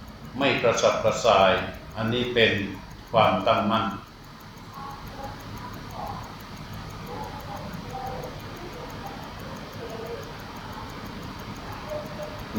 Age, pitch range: 60-79, 105-120 Hz